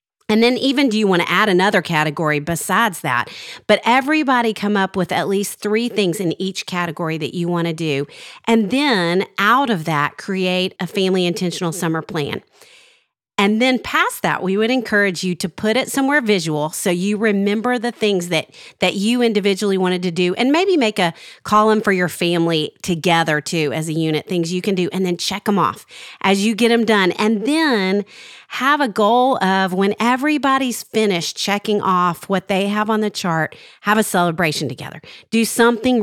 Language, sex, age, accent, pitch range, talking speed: English, female, 40-59, American, 170-225 Hz, 190 wpm